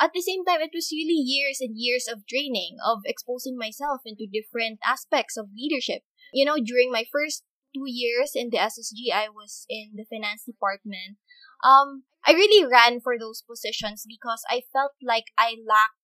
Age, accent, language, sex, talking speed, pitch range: 20-39, Filipino, English, female, 185 wpm, 215-280 Hz